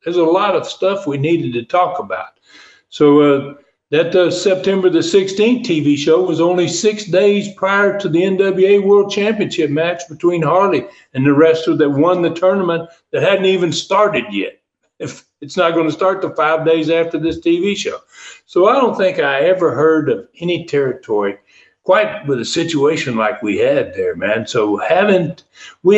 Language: English